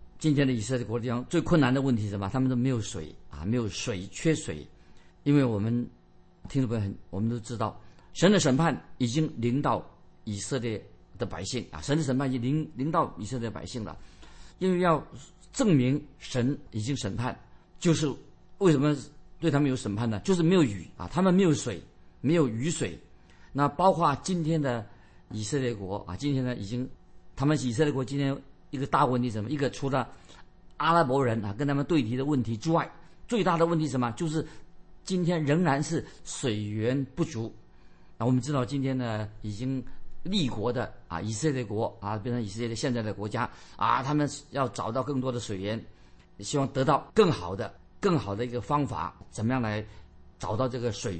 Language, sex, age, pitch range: Chinese, male, 50-69, 105-145 Hz